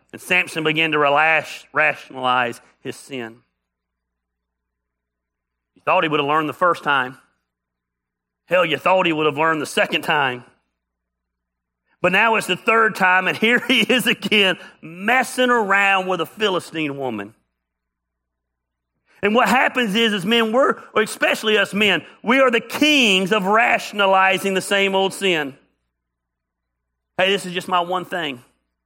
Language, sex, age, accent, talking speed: English, male, 40-59, American, 150 wpm